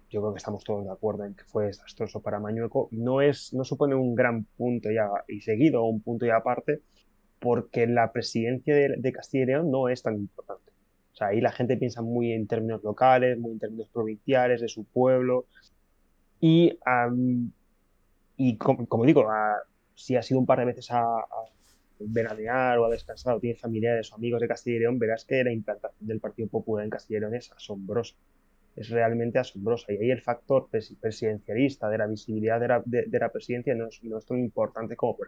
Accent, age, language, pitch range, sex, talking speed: Spanish, 20-39, Spanish, 110-125 Hz, male, 210 wpm